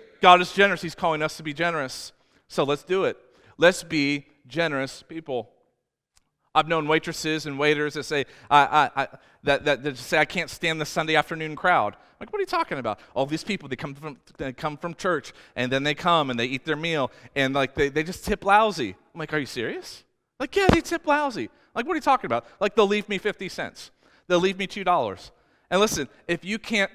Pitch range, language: 140-210 Hz, English